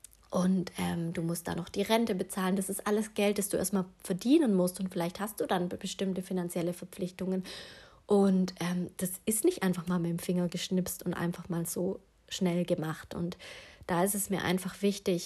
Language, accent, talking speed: German, German, 195 wpm